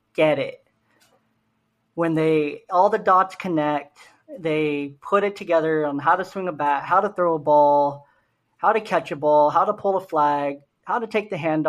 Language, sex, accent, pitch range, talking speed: English, male, American, 150-195 Hz, 195 wpm